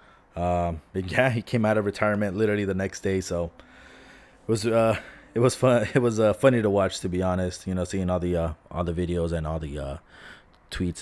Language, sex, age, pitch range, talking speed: English, male, 20-39, 90-110 Hz, 230 wpm